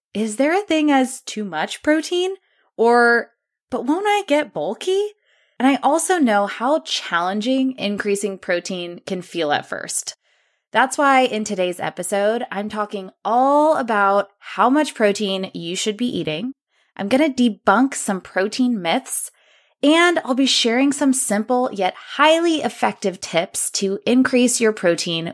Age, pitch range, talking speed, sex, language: 20-39, 180-265 Hz, 150 wpm, female, English